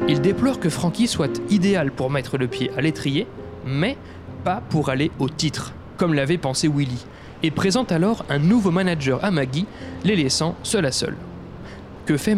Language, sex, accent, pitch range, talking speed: French, male, French, 135-190 Hz, 180 wpm